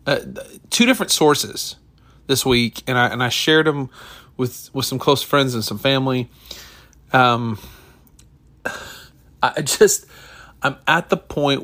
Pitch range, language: 115-140 Hz, English